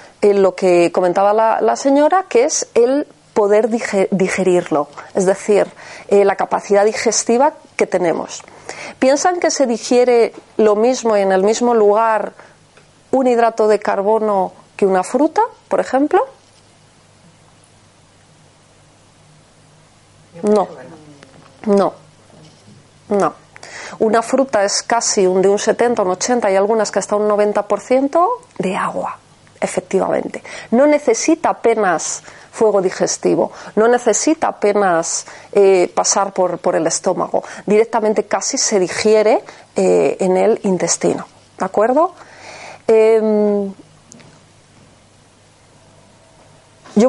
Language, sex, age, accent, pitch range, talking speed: Spanish, female, 30-49, Spanish, 195-245 Hz, 110 wpm